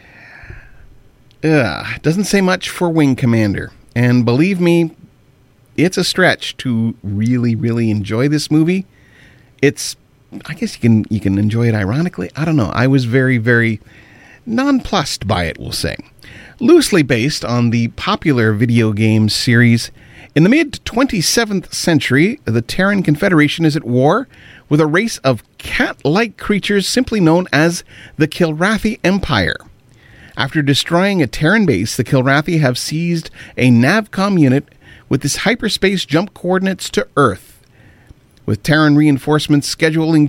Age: 40-59